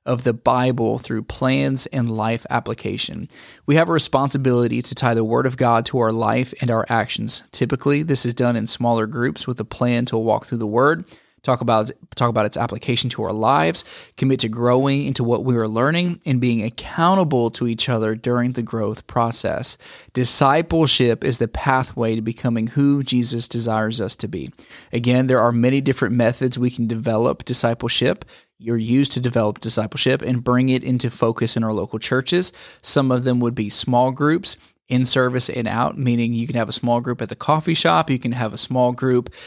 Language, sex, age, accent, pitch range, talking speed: English, male, 20-39, American, 115-135 Hz, 200 wpm